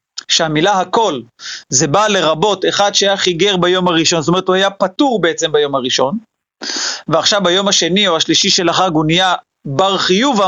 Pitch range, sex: 170-220 Hz, male